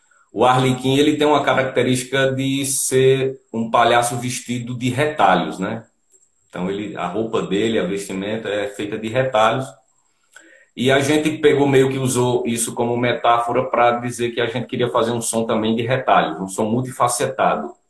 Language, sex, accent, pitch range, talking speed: Portuguese, male, Brazilian, 115-140 Hz, 170 wpm